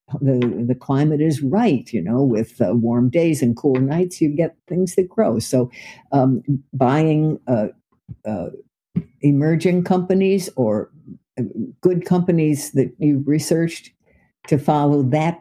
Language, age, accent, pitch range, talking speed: English, 60-79, American, 125-160 Hz, 135 wpm